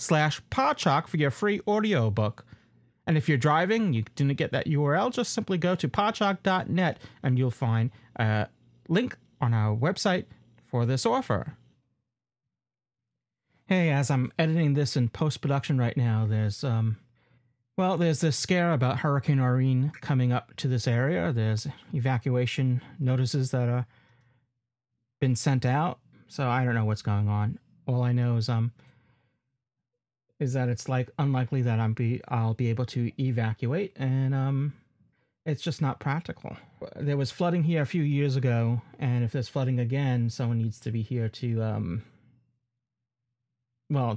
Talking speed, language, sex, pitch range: 155 wpm, English, male, 120-145 Hz